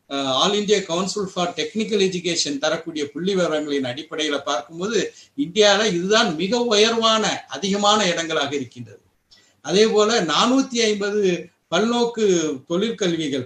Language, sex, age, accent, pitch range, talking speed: Tamil, male, 60-79, native, 145-200 Hz, 105 wpm